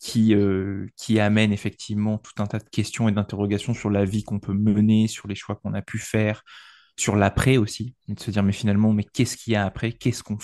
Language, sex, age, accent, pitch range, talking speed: French, male, 20-39, French, 105-125 Hz, 235 wpm